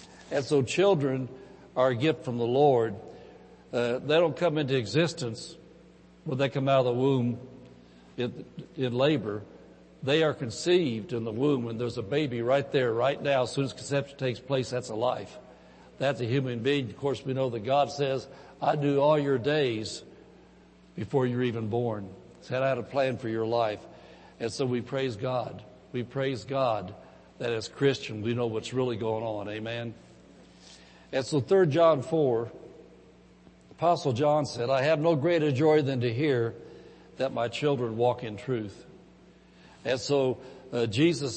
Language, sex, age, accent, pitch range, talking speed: English, male, 60-79, American, 115-140 Hz, 175 wpm